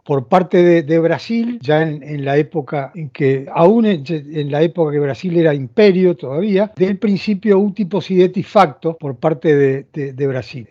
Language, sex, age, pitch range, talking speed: Portuguese, male, 40-59, 155-200 Hz, 195 wpm